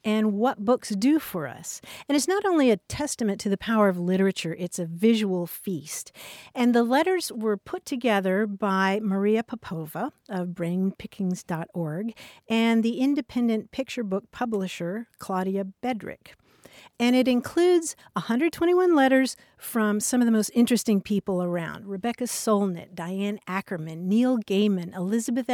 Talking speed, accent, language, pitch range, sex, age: 140 wpm, American, English, 185-235 Hz, female, 50-69